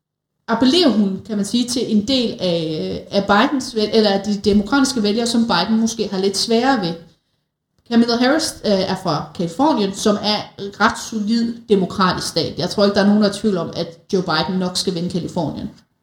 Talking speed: 195 wpm